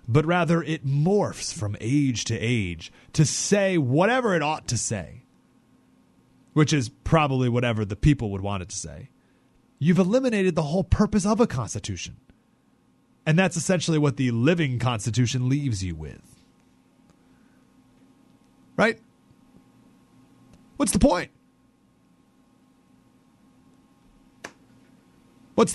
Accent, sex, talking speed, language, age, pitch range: American, male, 115 wpm, English, 30-49, 120-180 Hz